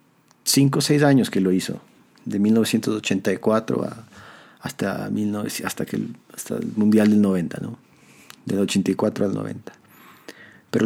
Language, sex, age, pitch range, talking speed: English, male, 40-59, 95-120 Hz, 135 wpm